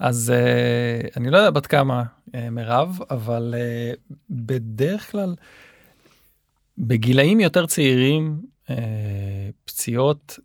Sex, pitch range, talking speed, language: male, 115-145 Hz, 105 wpm, Hebrew